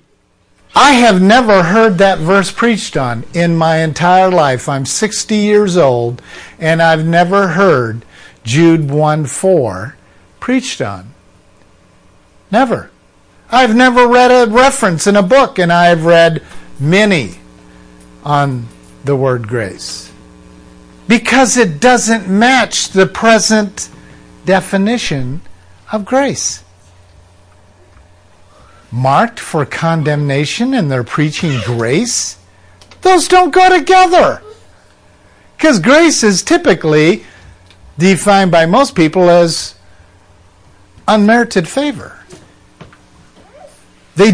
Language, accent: English, American